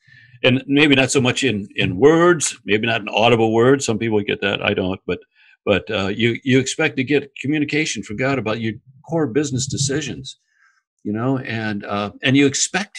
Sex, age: male, 60-79